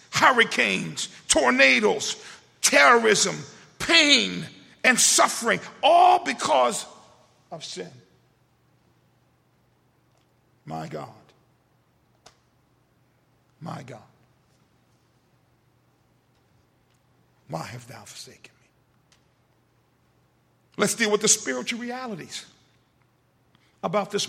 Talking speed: 65 wpm